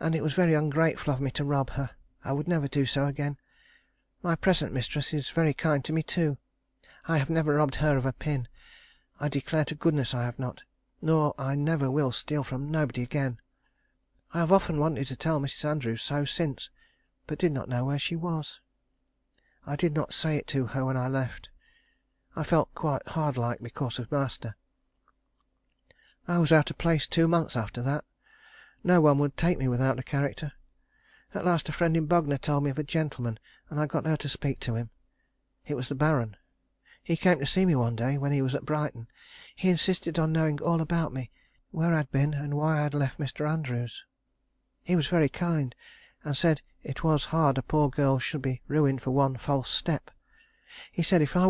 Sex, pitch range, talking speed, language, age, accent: male, 135-160 Hz, 200 wpm, English, 40-59, British